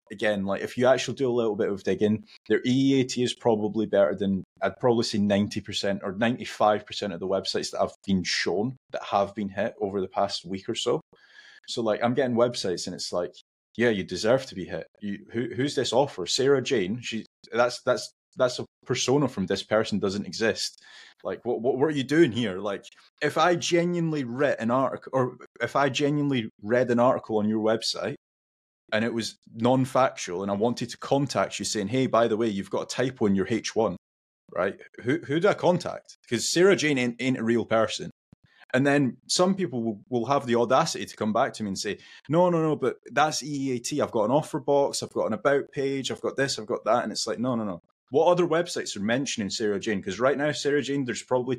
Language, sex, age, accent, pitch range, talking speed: English, male, 20-39, British, 105-140 Hz, 225 wpm